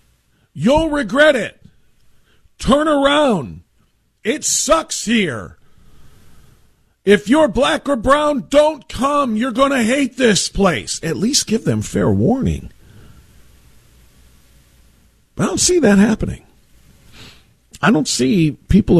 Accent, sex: American, male